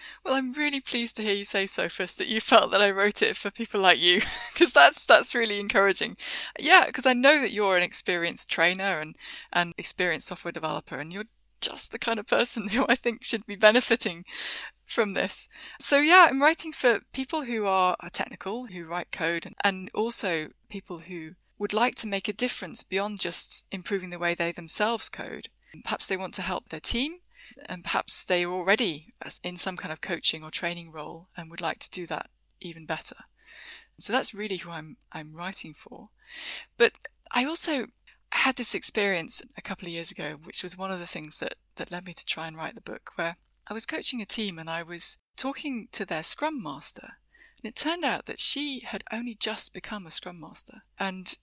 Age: 20-39